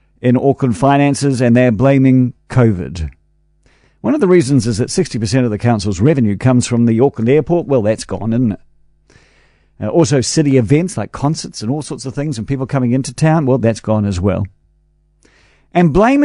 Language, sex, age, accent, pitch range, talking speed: English, male, 50-69, Australian, 135-185 Hz, 185 wpm